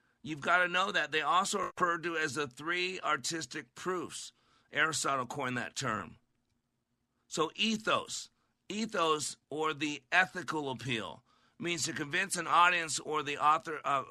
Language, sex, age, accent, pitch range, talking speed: English, male, 50-69, American, 135-165 Hz, 140 wpm